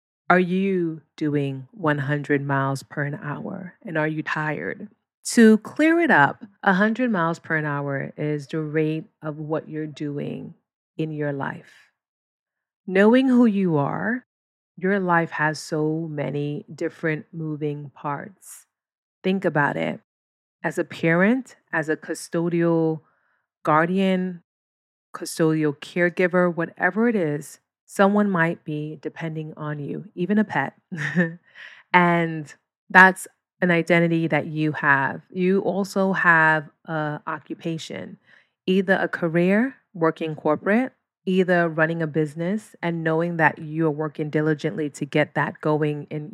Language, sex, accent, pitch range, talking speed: English, female, American, 150-185 Hz, 130 wpm